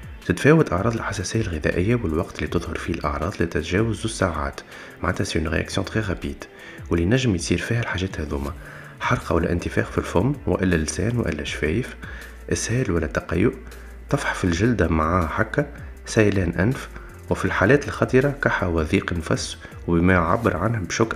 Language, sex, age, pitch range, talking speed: Arabic, male, 30-49, 80-110 Hz, 140 wpm